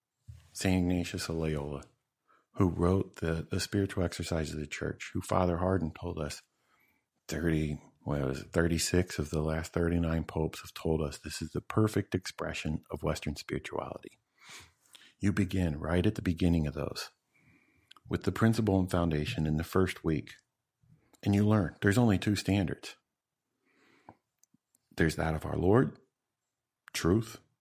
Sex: male